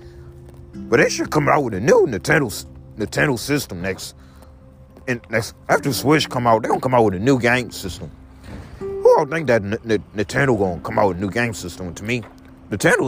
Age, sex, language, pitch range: 30-49, male, English, 85-125 Hz